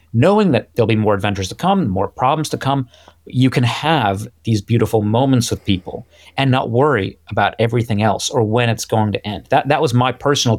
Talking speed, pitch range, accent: 210 wpm, 100-130 Hz, American